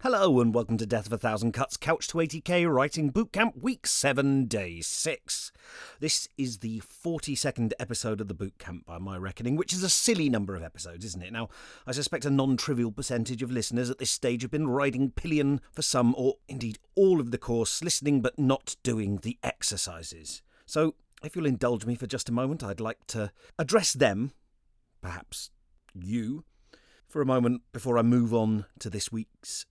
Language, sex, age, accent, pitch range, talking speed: English, male, 40-59, British, 110-145 Hz, 190 wpm